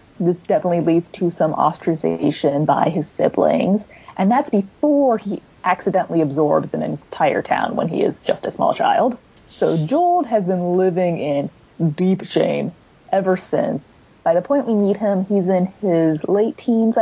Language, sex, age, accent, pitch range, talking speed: English, female, 20-39, American, 160-205 Hz, 160 wpm